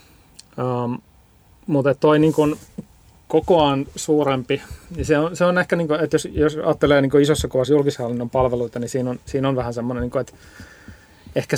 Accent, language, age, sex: native, Finnish, 30-49, male